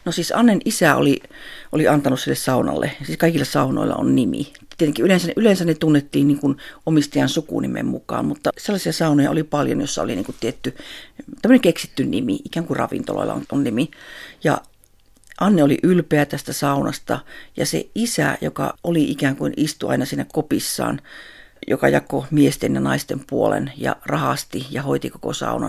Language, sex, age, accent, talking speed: Finnish, female, 50-69, native, 160 wpm